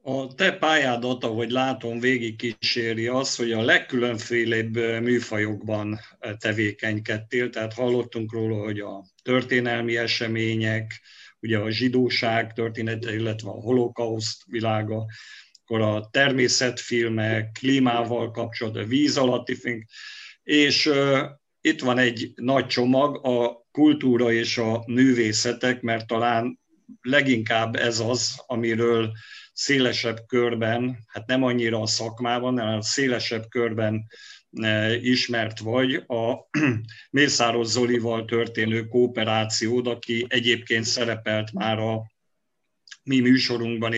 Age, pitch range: 50-69, 115-125 Hz